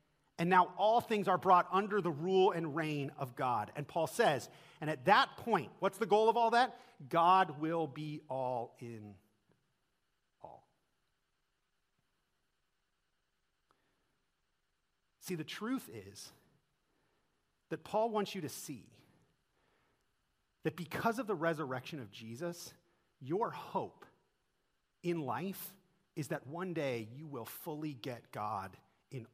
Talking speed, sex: 130 wpm, male